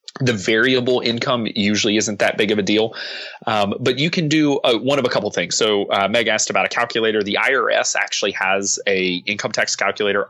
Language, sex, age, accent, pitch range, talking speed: English, male, 30-49, American, 100-115 Hz, 205 wpm